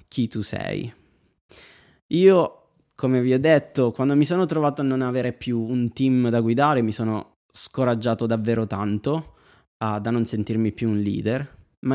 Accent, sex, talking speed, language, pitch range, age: native, male, 160 wpm, Italian, 115-140 Hz, 20-39